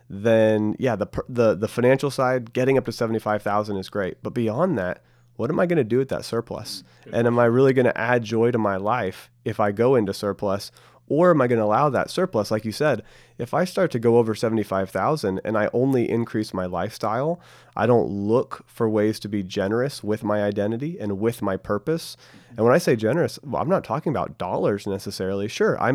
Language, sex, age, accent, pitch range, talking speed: English, male, 30-49, American, 105-125 Hz, 215 wpm